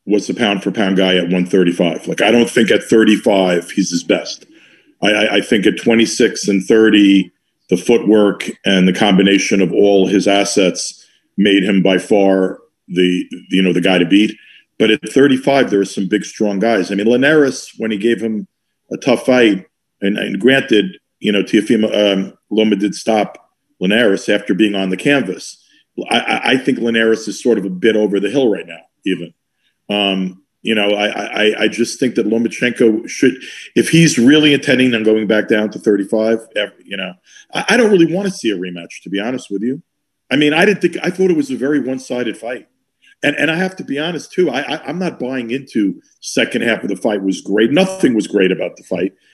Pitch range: 100-145 Hz